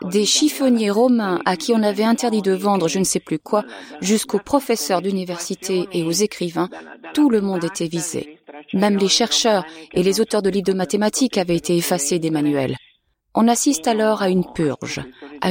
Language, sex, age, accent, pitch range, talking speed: French, female, 30-49, French, 170-225 Hz, 185 wpm